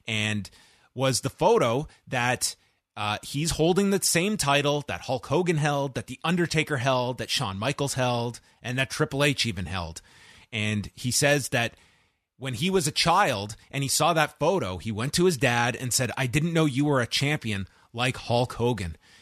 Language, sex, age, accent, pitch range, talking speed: English, male, 30-49, American, 105-140 Hz, 185 wpm